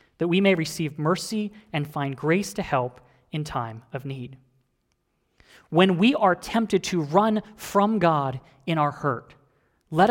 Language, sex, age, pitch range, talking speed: English, male, 30-49, 130-175 Hz, 155 wpm